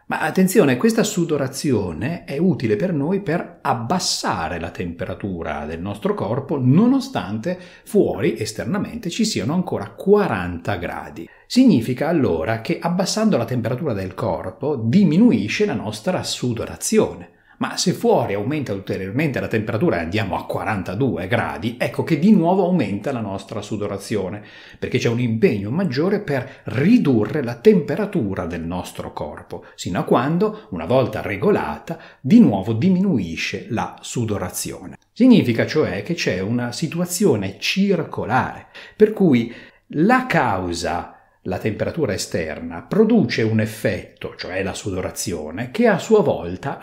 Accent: native